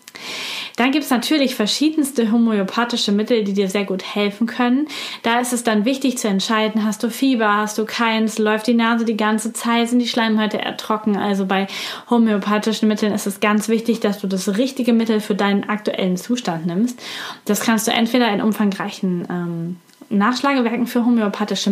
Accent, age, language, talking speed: German, 20-39, German, 175 wpm